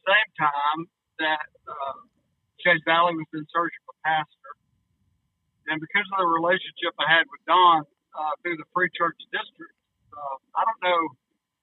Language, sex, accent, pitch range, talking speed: English, male, American, 150-180 Hz, 160 wpm